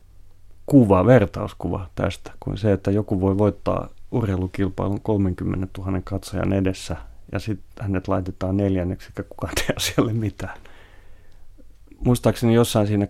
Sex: male